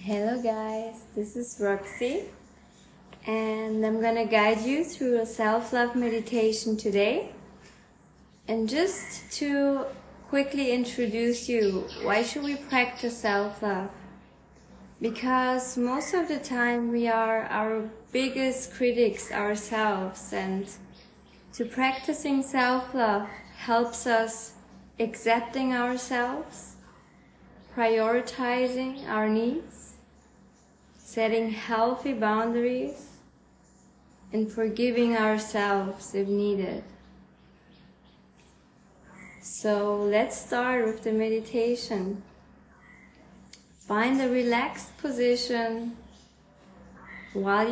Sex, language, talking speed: female, English, 85 wpm